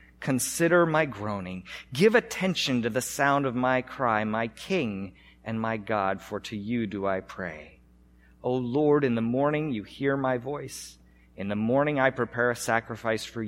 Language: English